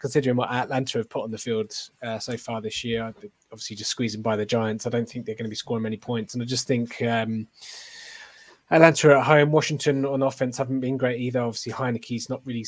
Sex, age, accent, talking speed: male, 20-39, British, 225 wpm